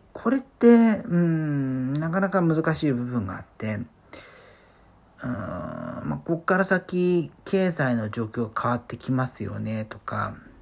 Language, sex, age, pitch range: Japanese, male, 40-59, 115-160 Hz